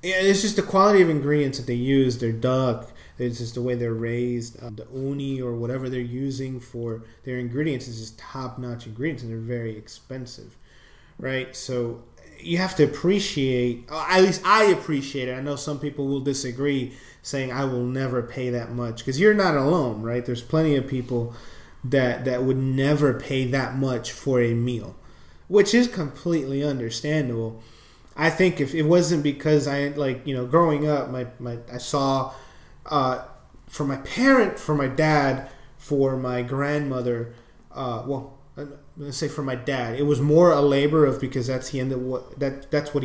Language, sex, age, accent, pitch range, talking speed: English, male, 30-49, American, 125-145 Hz, 180 wpm